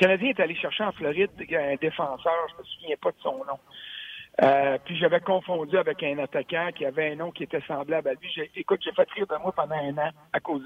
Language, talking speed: French, 255 wpm